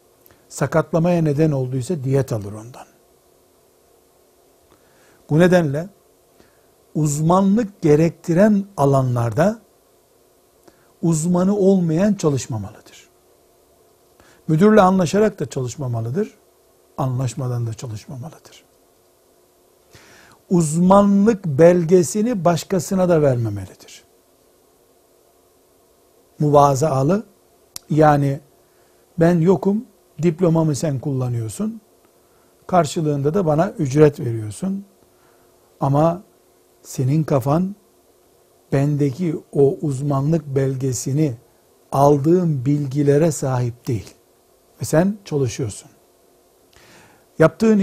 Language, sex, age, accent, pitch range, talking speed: Turkish, male, 60-79, native, 135-180 Hz, 70 wpm